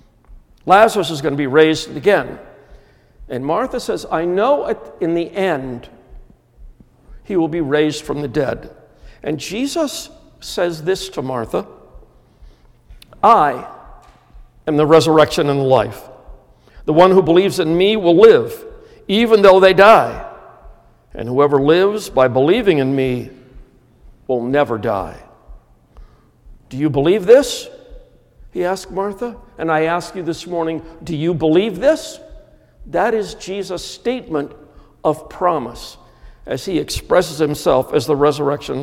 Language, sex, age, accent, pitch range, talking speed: English, male, 50-69, American, 140-195 Hz, 135 wpm